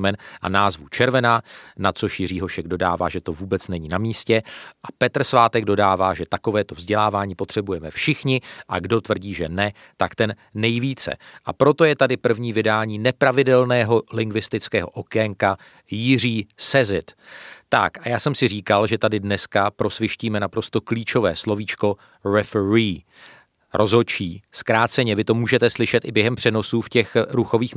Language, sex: Czech, male